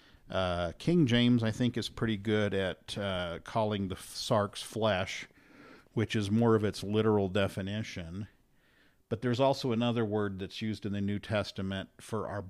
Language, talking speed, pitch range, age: English, 165 wpm, 100-115 Hz, 50-69